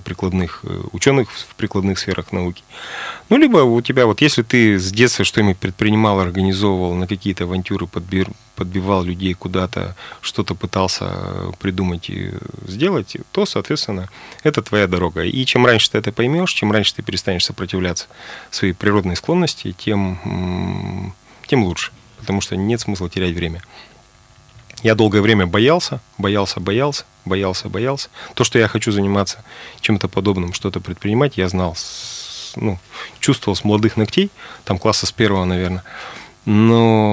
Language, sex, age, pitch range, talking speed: Russian, male, 30-49, 90-115 Hz, 140 wpm